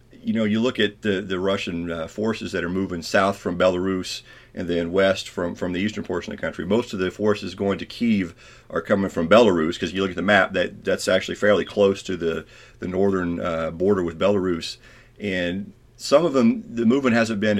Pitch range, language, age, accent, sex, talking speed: 90-105 Hz, English, 40-59, American, male, 220 wpm